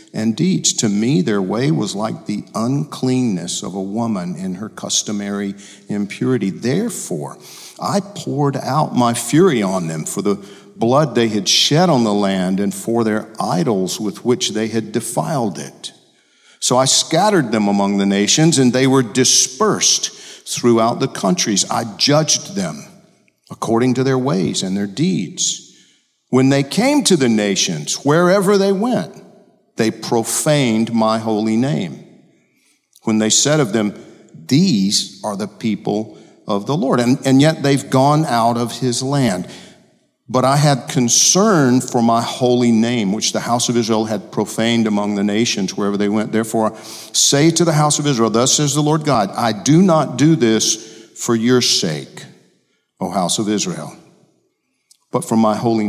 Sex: male